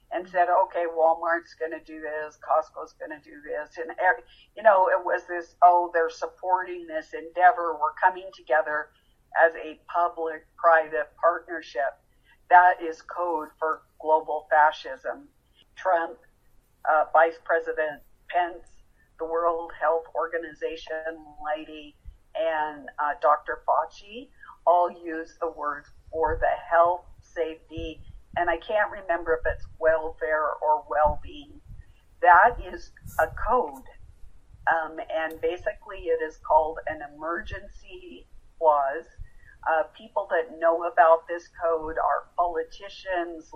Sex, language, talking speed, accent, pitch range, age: female, English, 120 wpm, American, 155-180 Hz, 50-69